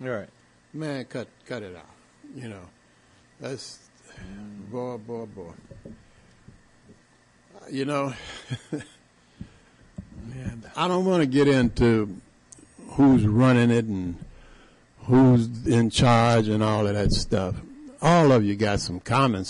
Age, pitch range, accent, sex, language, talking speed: 60-79, 110-135 Hz, American, male, English, 125 wpm